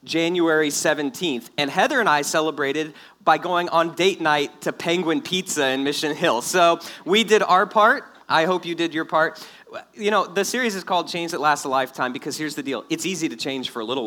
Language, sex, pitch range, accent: English, male, 145-180 Hz, American